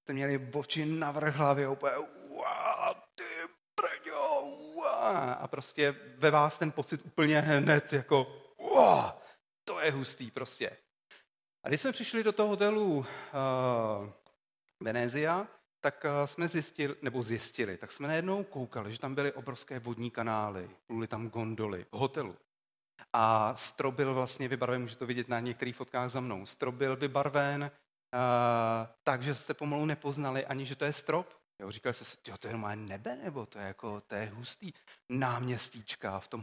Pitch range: 120-150 Hz